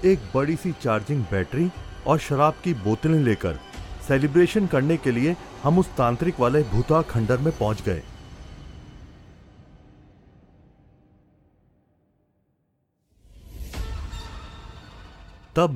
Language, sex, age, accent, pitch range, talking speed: Hindi, male, 40-59, native, 100-155 Hz, 90 wpm